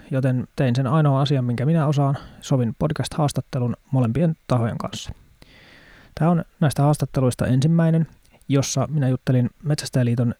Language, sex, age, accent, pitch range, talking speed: Finnish, male, 20-39, native, 130-160 Hz, 125 wpm